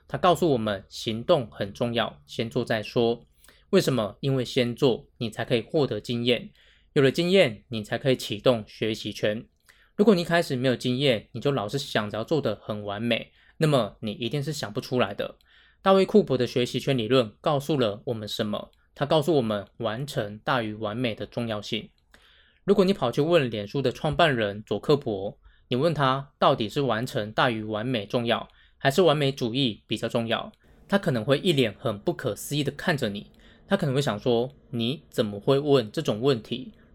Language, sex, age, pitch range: Chinese, male, 20-39, 110-140 Hz